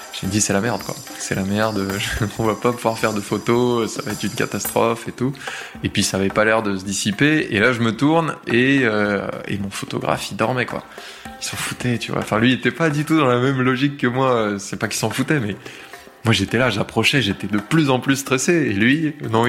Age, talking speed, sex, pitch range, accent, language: 20-39, 250 wpm, male, 100-120 Hz, French, French